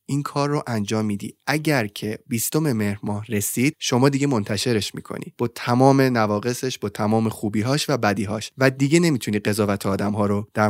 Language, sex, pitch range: Persian, male, 110-150 Hz